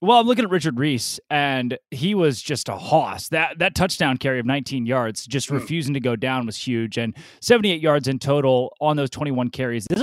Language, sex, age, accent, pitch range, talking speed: English, male, 20-39, American, 135-180 Hz, 215 wpm